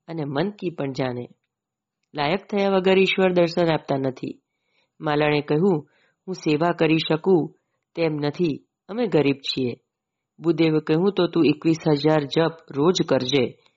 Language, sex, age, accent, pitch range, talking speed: Gujarati, female, 30-49, native, 145-175 Hz, 90 wpm